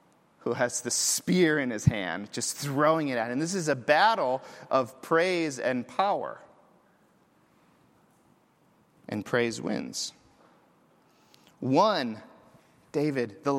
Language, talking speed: English, 115 wpm